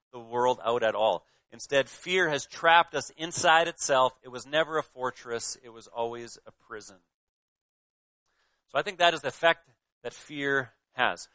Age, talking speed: 30-49, 170 wpm